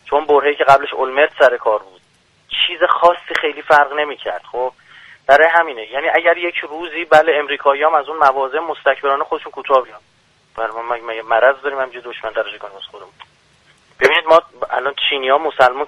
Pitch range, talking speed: 130-160 Hz, 165 wpm